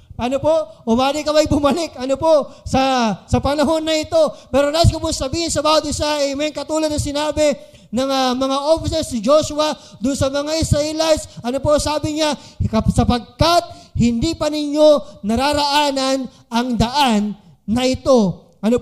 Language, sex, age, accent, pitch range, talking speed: Filipino, male, 20-39, native, 245-305 Hz, 160 wpm